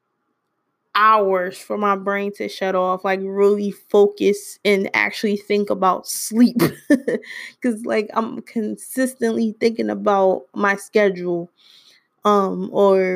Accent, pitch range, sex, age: American, 195-225 Hz, female, 20-39